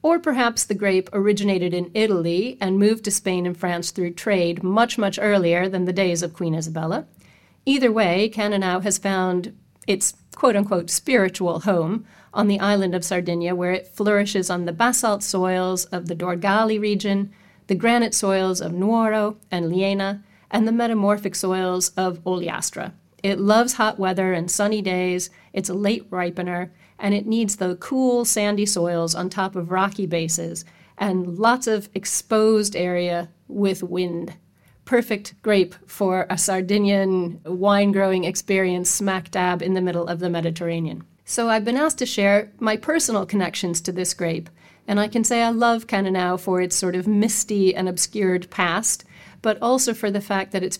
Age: 40-59